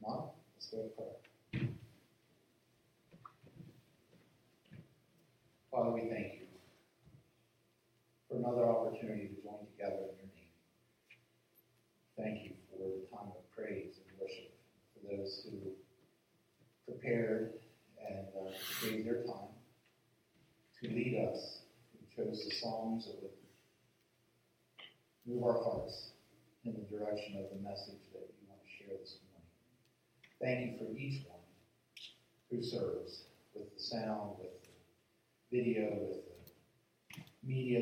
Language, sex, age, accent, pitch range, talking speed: English, male, 40-59, American, 100-120 Hz, 125 wpm